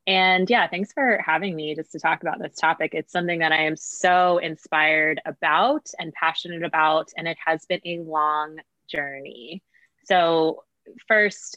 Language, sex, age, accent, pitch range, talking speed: English, female, 20-39, American, 160-190 Hz, 165 wpm